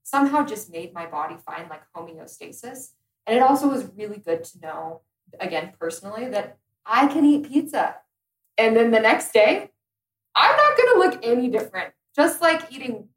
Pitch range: 175-250 Hz